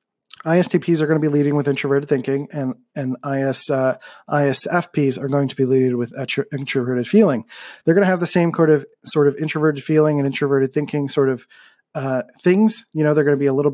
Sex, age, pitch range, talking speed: male, 30-49, 135-160 Hz, 215 wpm